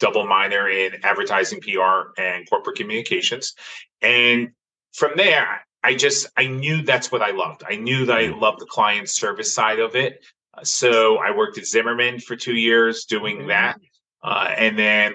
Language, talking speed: English, 170 wpm